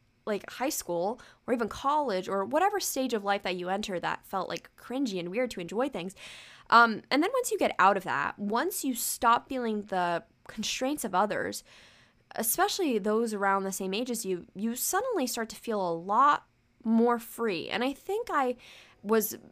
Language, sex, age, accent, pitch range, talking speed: English, female, 10-29, American, 195-255 Hz, 190 wpm